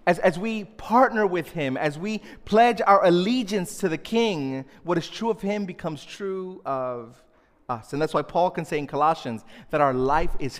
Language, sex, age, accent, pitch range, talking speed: English, male, 30-49, American, 140-185 Hz, 200 wpm